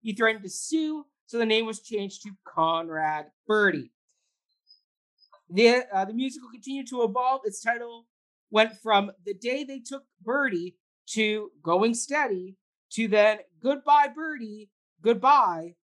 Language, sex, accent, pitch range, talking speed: English, male, American, 190-250 Hz, 135 wpm